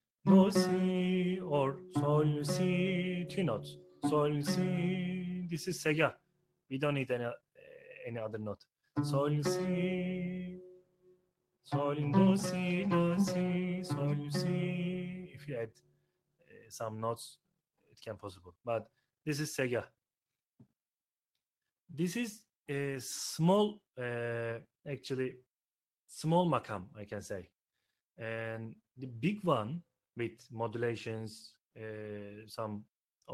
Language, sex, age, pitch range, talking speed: Arabic, male, 30-49, 120-180 Hz, 120 wpm